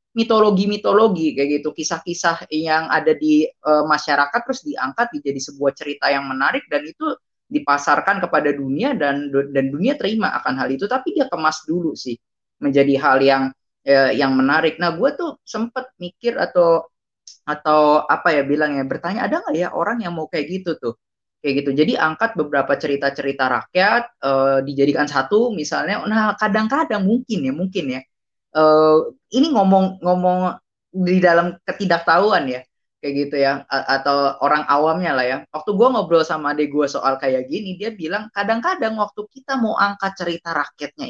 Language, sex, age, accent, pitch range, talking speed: Indonesian, female, 20-39, native, 145-210 Hz, 165 wpm